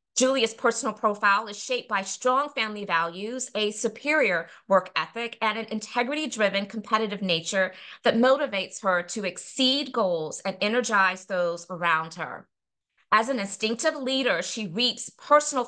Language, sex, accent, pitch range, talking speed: English, female, American, 190-250 Hz, 140 wpm